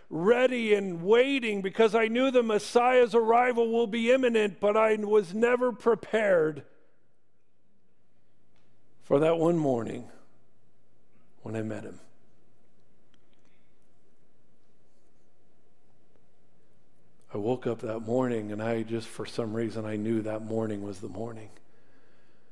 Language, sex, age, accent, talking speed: English, male, 50-69, American, 115 wpm